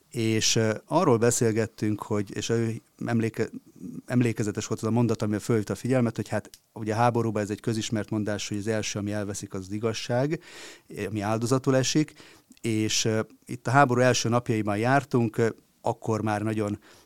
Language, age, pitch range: Hungarian, 30-49, 105-120 Hz